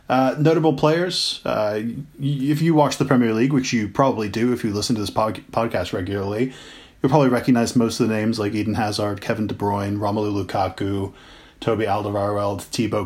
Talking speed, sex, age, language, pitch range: 190 wpm, male, 30-49, English, 110-135 Hz